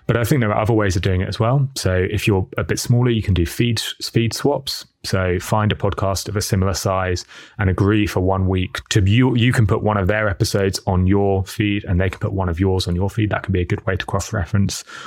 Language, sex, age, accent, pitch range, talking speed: English, male, 20-39, British, 95-110 Hz, 265 wpm